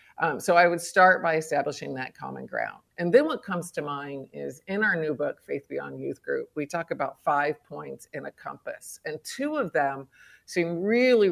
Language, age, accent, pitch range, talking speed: English, 50-69, American, 150-185 Hz, 205 wpm